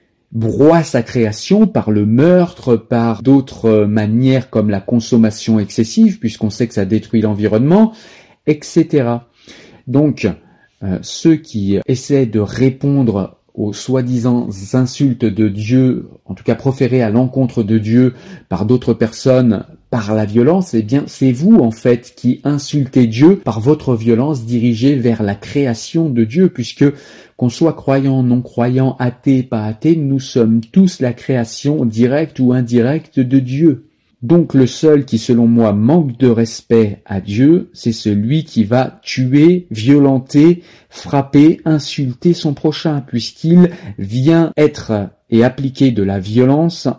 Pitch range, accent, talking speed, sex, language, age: 115-145 Hz, French, 145 wpm, male, French, 40-59